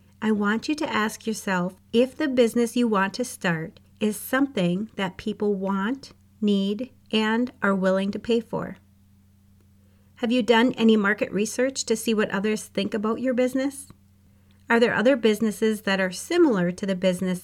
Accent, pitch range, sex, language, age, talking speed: American, 185-235 Hz, female, English, 40-59, 170 wpm